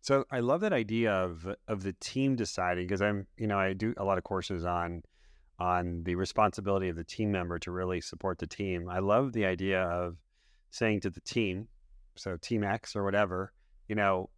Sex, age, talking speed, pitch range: male, 30-49, 205 wpm, 90-115 Hz